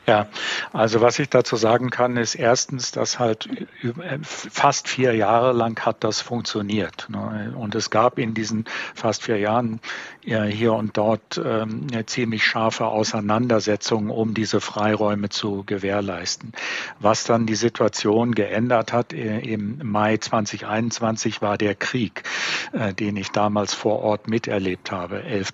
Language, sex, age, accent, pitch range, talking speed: German, male, 50-69, German, 105-115 Hz, 135 wpm